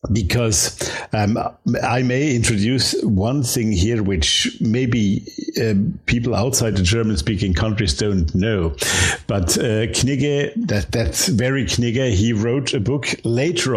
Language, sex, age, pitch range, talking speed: English, male, 60-79, 105-125 Hz, 135 wpm